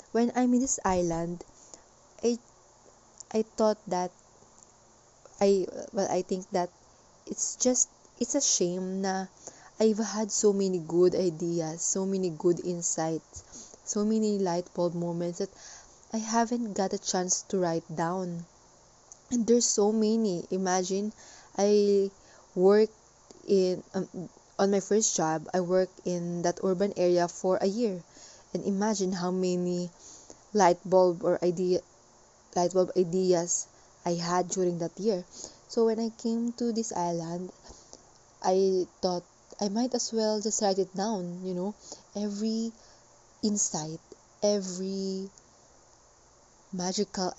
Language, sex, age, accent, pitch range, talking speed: English, female, 20-39, Filipino, 175-210 Hz, 135 wpm